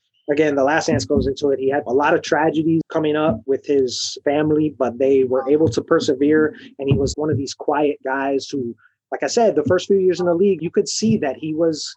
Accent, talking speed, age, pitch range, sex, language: American, 245 wpm, 20-39, 135-185 Hz, male, English